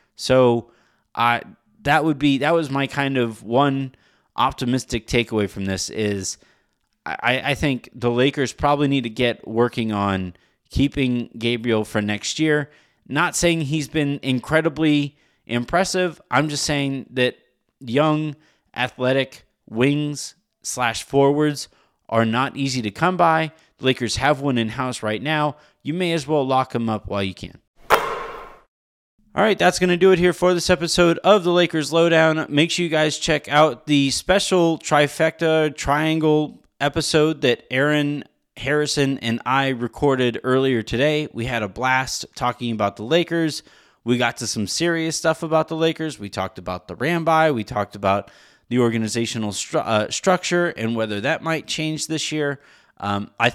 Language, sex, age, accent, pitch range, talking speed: English, male, 30-49, American, 115-155 Hz, 160 wpm